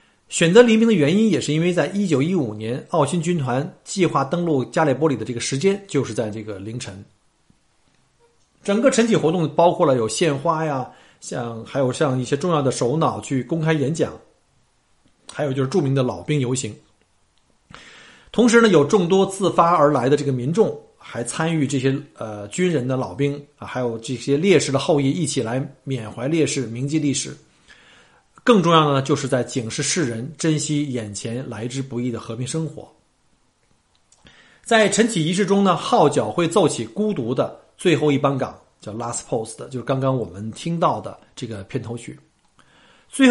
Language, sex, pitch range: Chinese, male, 125-170 Hz